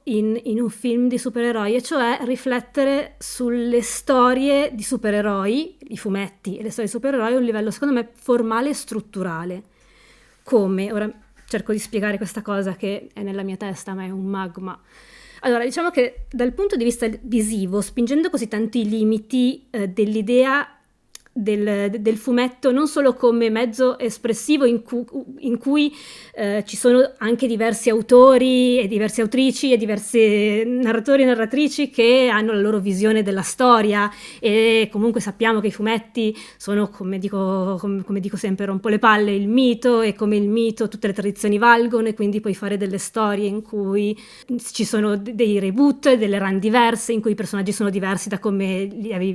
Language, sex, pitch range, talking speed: Italian, female, 205-245 Hz, 175 wpm